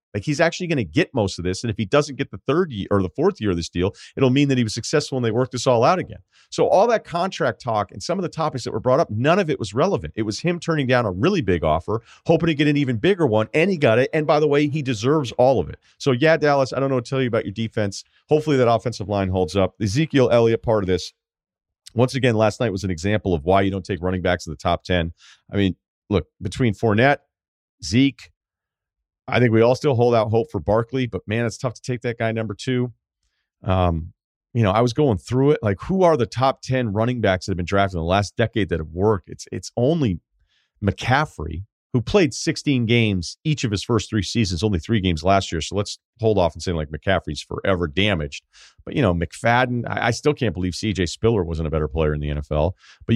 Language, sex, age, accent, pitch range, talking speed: English, male, 40-59, American, 95-130 Hz, 255 wpm